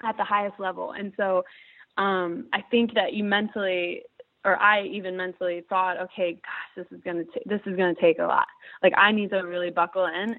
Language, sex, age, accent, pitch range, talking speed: English, female, 20-39, American, 175-200 Hz, 215 wpm